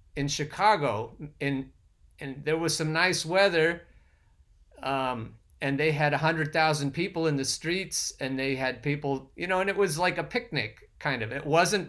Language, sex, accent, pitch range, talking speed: English, male, American, 125-175 Hz, 185 wpm